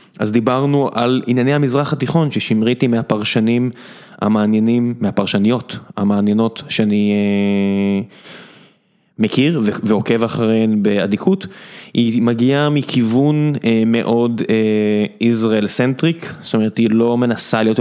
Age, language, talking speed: 20-39, Hebrew, 100 wpm